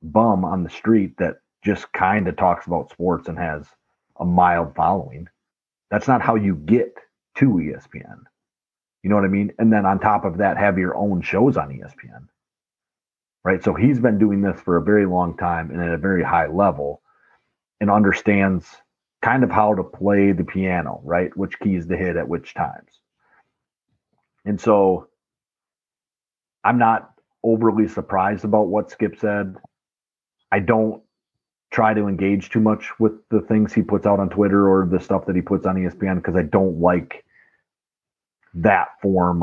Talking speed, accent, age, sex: 170 wpm, American, 40-59, male